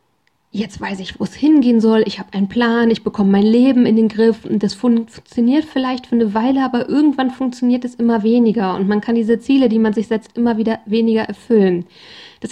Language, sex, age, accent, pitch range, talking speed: German, female, 10-29, German, 215-255 Hz, 215 wpm